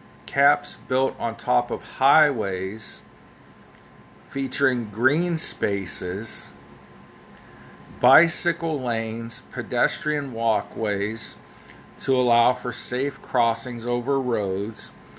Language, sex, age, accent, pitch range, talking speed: English, male, 40-59, American, 115-140 Hz, 80 wpm